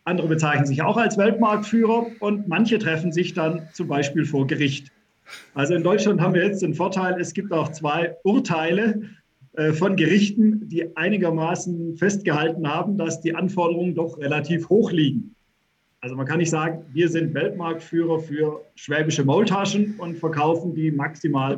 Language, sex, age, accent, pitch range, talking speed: German, male, 50-69, German, 155-200 Hz, 155 wpm